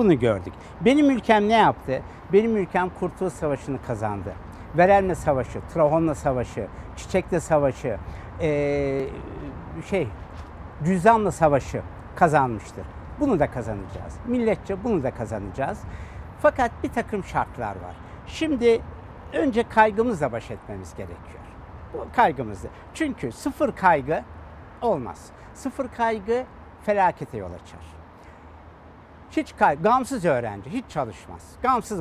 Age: 60-79